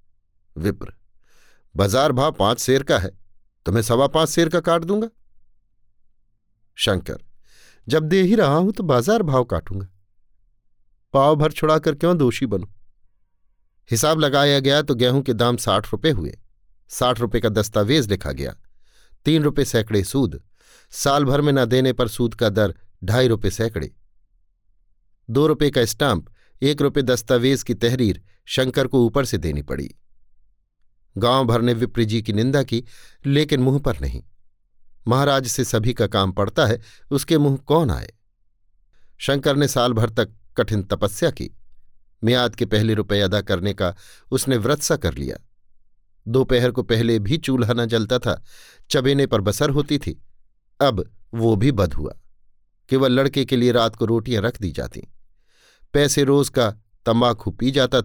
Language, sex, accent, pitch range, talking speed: Hindi, male, native, 100-135 Hz, 160 wpm